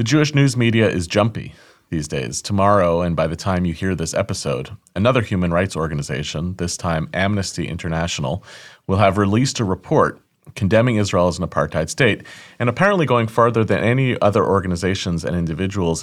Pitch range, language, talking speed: 85-105 Hz, English, 170 wpm